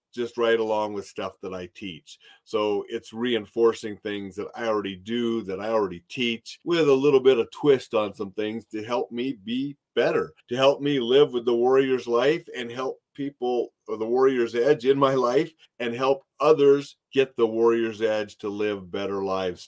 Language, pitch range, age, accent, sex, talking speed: English, 115-150 Hz, 40-59, American, male, 190 wpm